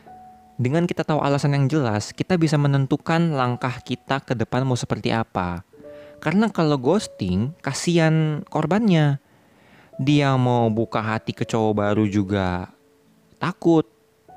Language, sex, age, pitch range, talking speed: Indonesian, male, 20-39, 105-145 Hz, 125 wpm